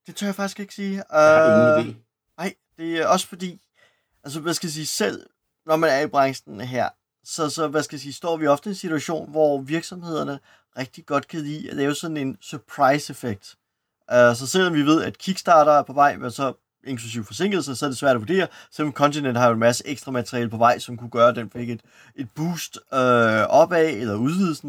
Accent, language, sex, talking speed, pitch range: native, Danish, male, 220 wpm, 125-165 Hz